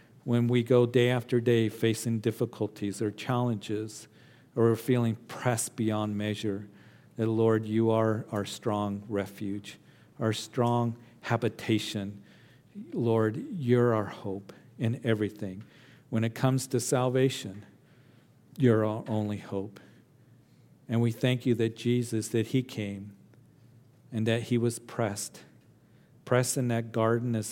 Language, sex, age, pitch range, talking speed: English, male, 50-69, 110-125 Hz, 130 wpm